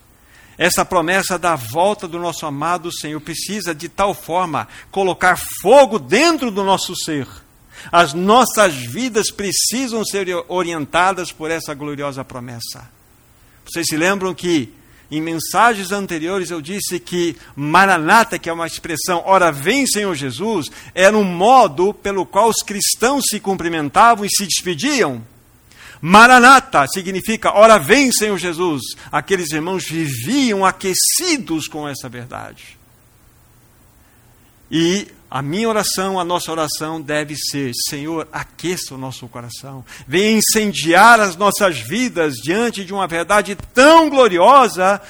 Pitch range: 150-200 Hz